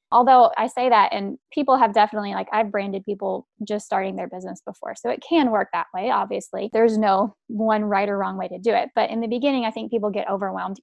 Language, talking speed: English, 240 wpm